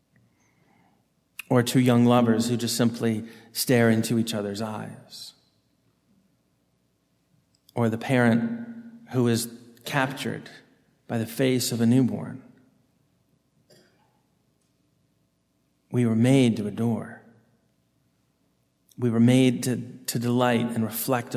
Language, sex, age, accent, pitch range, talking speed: English, male, 40-59, American, 115-135 Hz, 105 wpm